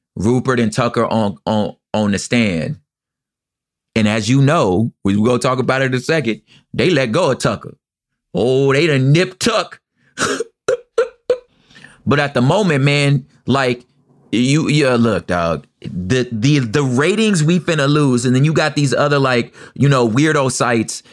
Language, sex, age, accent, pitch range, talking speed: English, male, 30-49, American, 120-150 Hz, 165 wpm